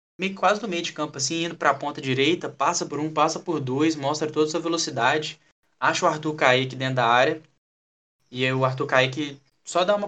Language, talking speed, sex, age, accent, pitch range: Portuguese, 220 wpm, male, 10-29, Brazilian, 125-155 Hz